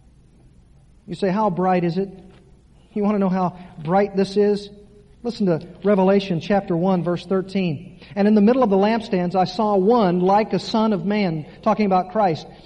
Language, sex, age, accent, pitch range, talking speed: English, male, 40-59, American, 180-230 Hz, 185 wpm